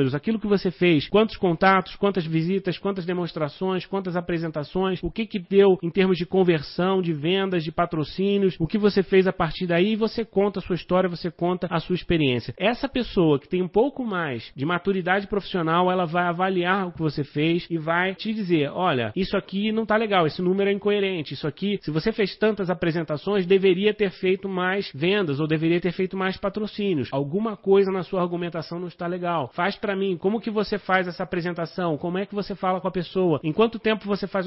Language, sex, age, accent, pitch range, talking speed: Portuguese, male, 30-49, Brazilian, 170-200 Hz, 210 wpm